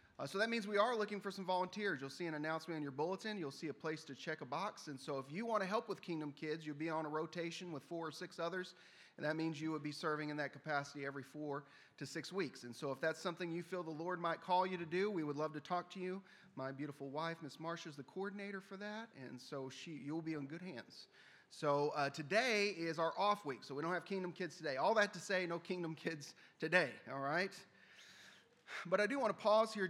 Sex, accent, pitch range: male, American, 150-185 Hz